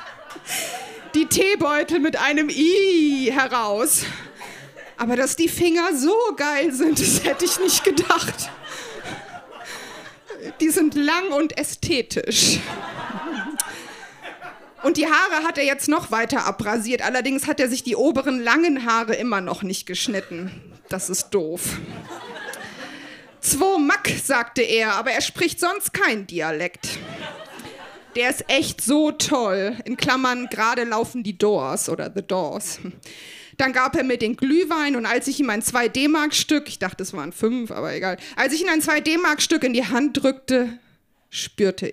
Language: German